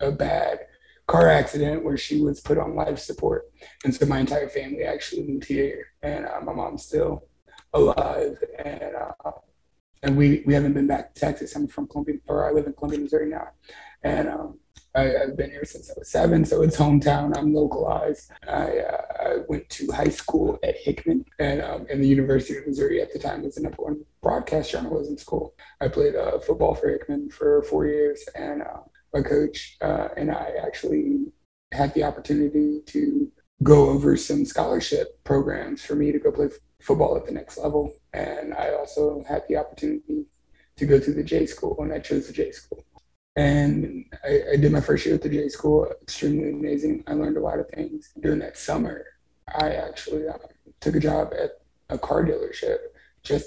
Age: 20-39